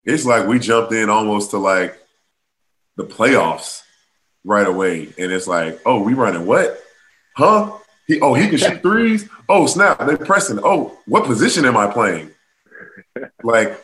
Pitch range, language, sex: 100-130 Hz, English, male